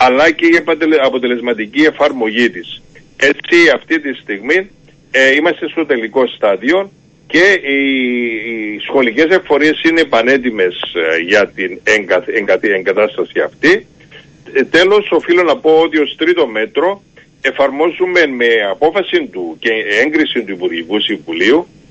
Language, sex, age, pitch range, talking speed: Greek, male, 50-69, 120-165 Hz, 120 wpm